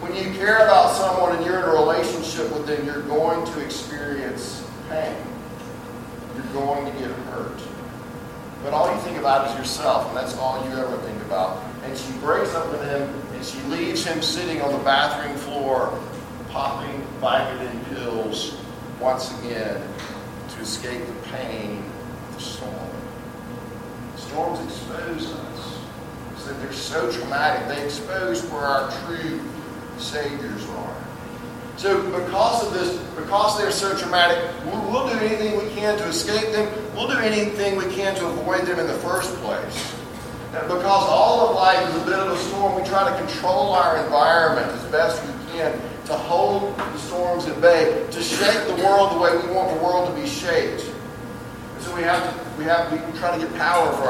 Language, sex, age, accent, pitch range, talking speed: English, male, 40-59, American, 125-185 Hz, 180 wpm